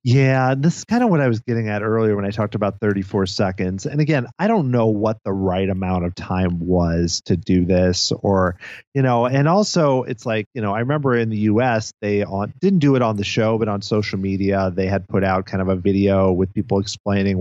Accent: American